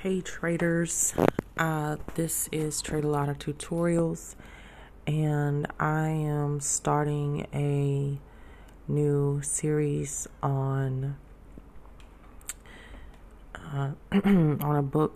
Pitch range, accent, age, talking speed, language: 120-145 Hz, American, 20-39, 85 wpm, English